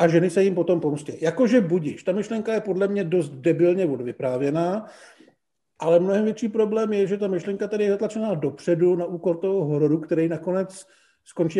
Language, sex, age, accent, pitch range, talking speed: Czech, male, 50-69, native, 160-195 Hz, 180 wpm